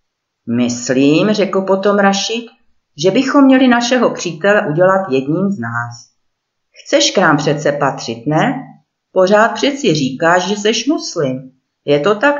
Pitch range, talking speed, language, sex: 140-200 Hz, 135 wpm, Czech, female